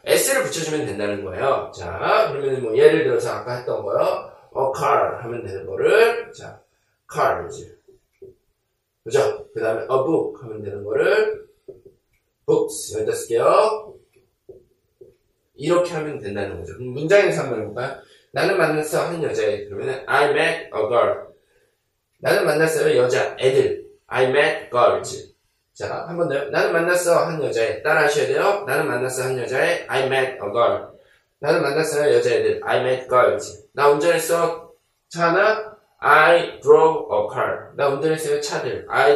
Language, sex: Korean, male